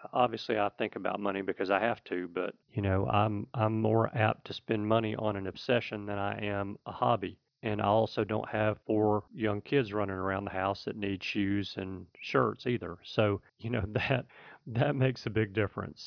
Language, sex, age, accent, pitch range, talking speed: English, male, 40-59, American, 105-120 Hz, 200 wpm